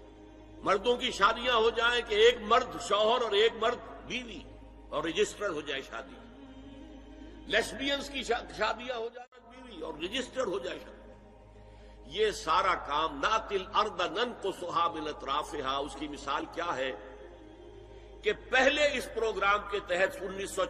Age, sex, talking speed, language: 60-79, male, 135 wpm, Urdu